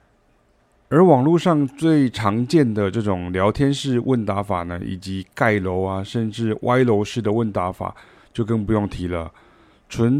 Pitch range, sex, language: 100-130 Hz, male, Chinese